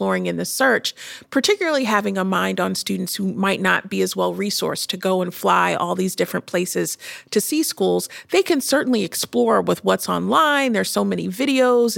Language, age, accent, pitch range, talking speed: English, 40-59, American, 185-230 Hz, 190 wpm